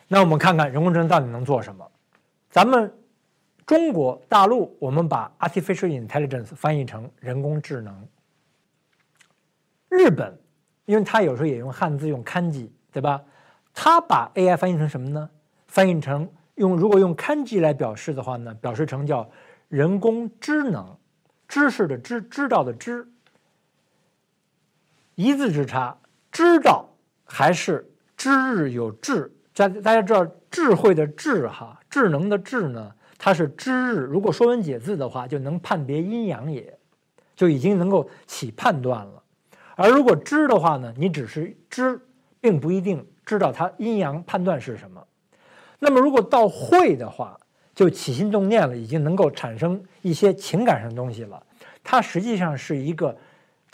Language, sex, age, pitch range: Chinese, male, 50-69, 140-220 Hz